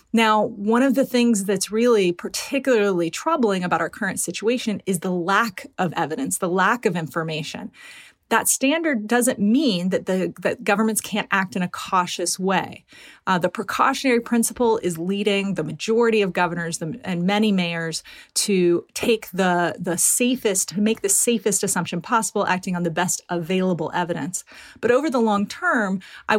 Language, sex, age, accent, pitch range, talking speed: English, female, 30-49, American, 180-230 Hz, 160 wpm